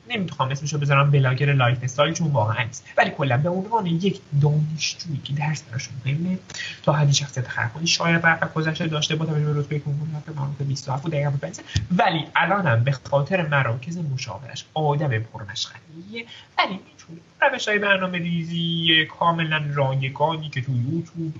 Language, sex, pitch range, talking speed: Persian, male, 125-170 Hz, 150 wpm